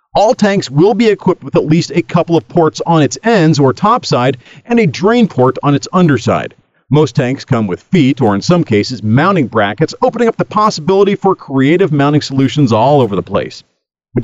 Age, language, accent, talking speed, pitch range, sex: 40-59, English, American, 205 wpm, 130-185 Hz, male